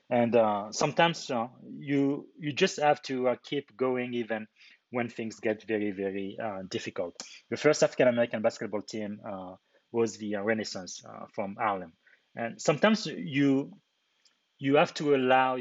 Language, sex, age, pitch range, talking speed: English, male, 30-49, 105-125 Hz, 155 wpm